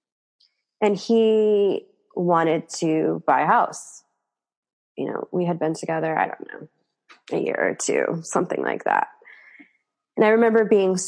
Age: 20-39